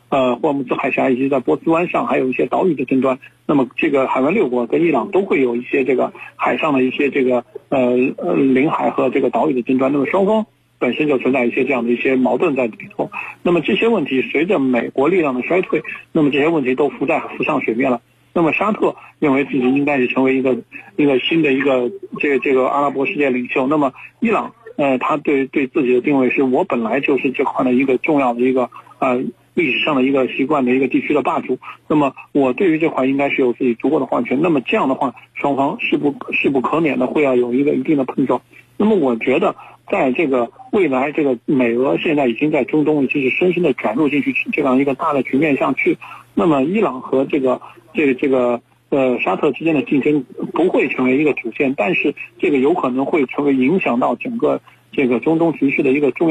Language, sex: Chinese, male